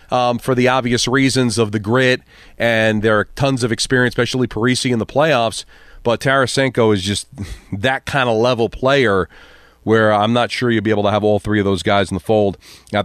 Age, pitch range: 40-59, 115-145 Hz